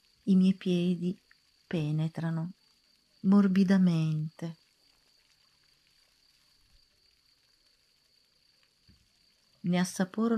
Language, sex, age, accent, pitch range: Italian, female, 40-59, native, 160-200 Hz